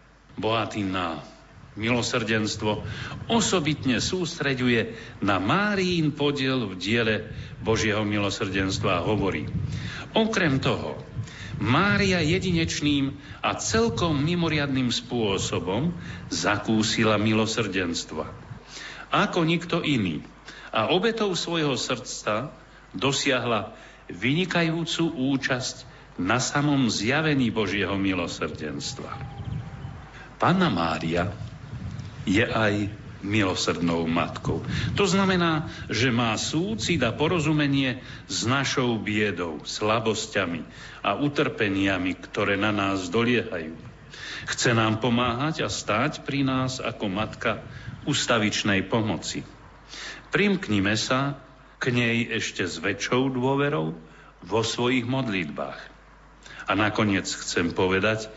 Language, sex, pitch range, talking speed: Slovak, male, 105-140 Hz, 90 wpm